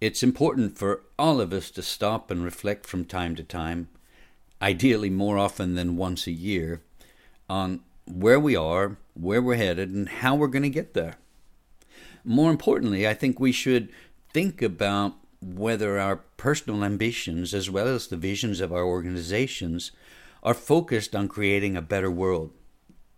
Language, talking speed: English, 160 wpm